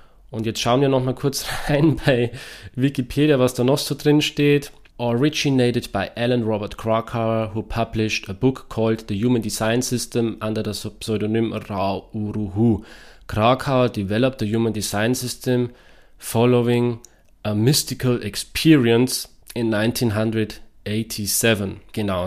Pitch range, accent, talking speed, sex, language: 105-125 Hz, German, 130 wpm, male, German